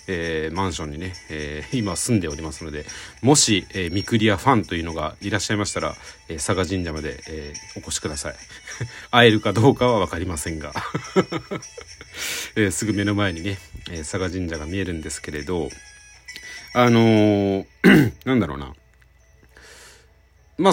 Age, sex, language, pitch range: 40-59, male, Japanese, 85-125 Hz